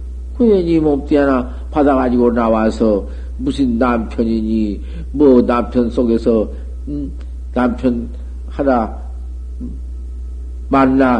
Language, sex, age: Korean, male, 50-69